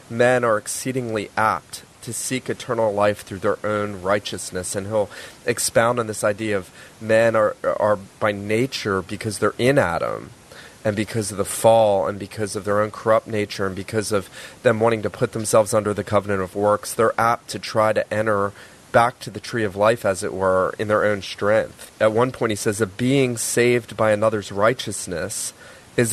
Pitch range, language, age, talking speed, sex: 100-120 Hz, English, 30-49, 195 wpm, male